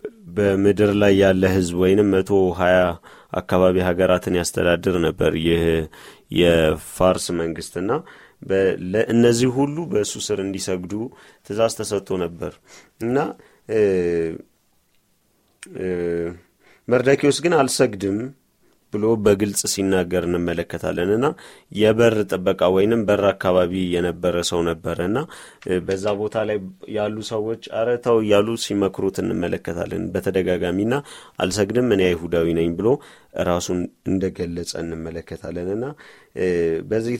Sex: male